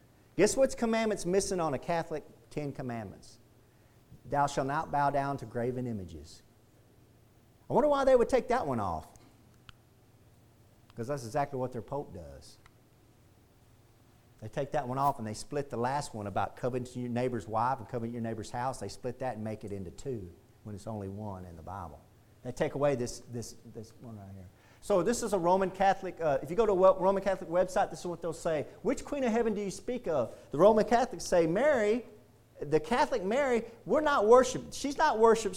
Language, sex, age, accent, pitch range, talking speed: English, male, 40-59, American, 115-170 Hz, 200 wpm